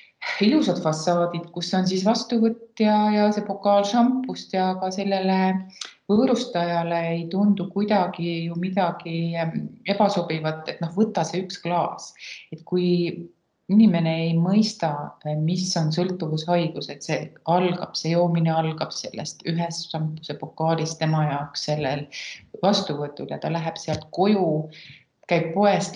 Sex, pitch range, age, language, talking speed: female, 155-190 Hz, 30-49, English, 125 wpm